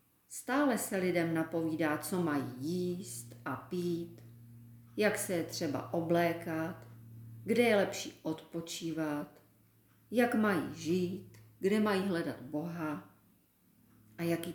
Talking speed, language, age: 110 wpm, Czech, 40-59